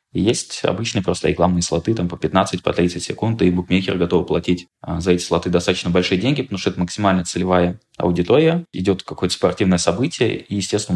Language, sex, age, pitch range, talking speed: Russian, male, 20-39, 90-100 Hz, 175 wpm